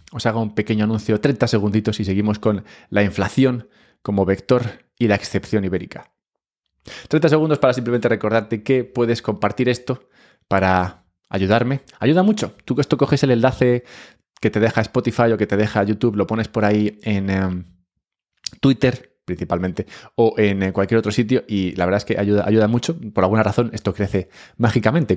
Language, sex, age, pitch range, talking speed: English, male, 20-39, 95-125 Hz, 175 wpm